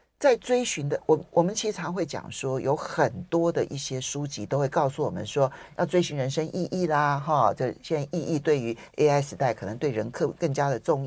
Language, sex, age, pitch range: Chinese, male, 50-69, 135-180 Hz